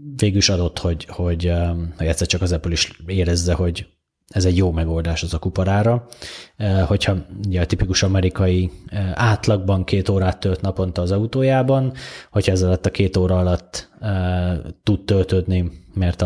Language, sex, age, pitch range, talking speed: Hungarian, male, 20-39, 85-105 Hz, 145 wpm